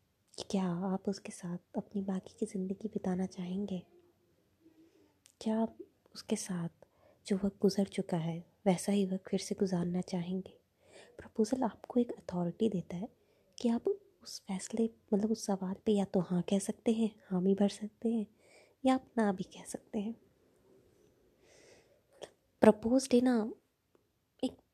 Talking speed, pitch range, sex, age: 150 wpm, 175-220 Hz, female, 20-39